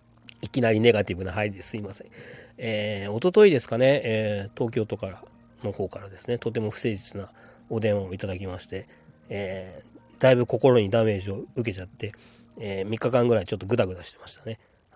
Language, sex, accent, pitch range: Japanese, male, native, 100-120 Hz